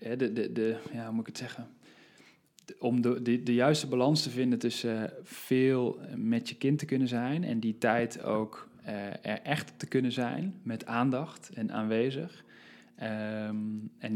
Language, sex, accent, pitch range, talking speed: Dutch, male, Dutch, 110-120 Hz, 155 wpm